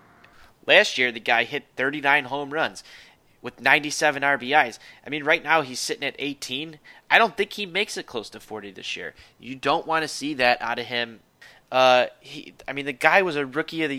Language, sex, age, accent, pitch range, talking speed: English, male, 20-39, American, 125-155 Hz, 210 wpm